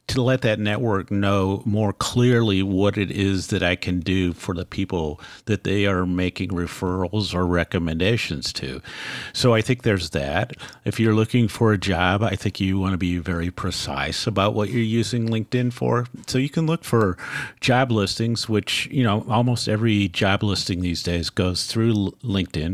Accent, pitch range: American, 95-120 Hz